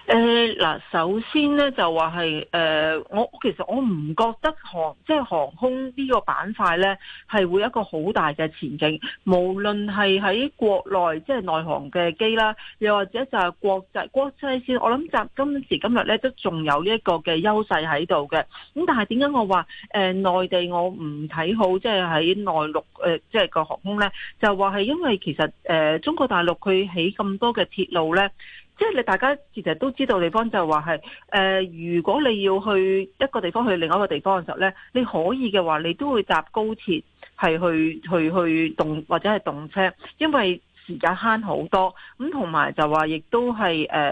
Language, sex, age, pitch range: Chinese, female, 40-59, 170-225 Hz